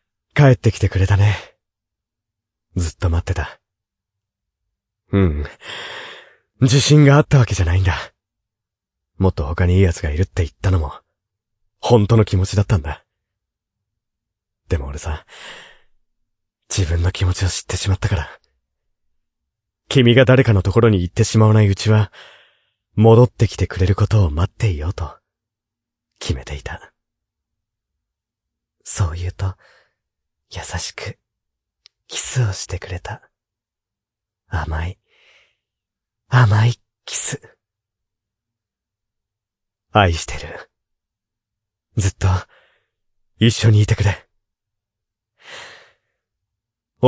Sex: male